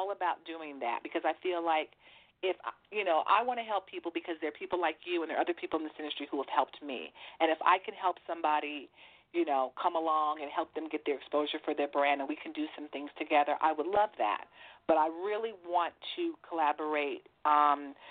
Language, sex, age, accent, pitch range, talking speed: English, female, 40-59, American, 145-180 Hz, 230 wpm